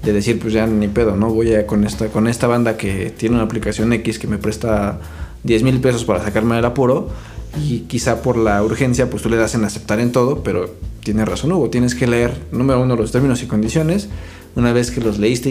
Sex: male